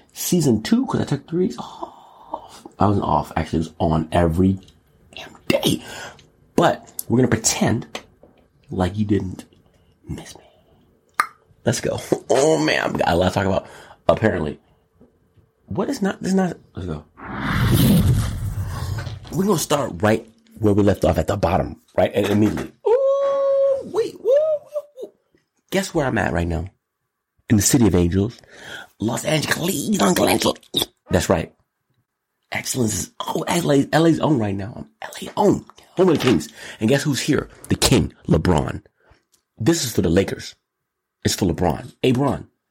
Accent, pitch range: American, 95-145 Hz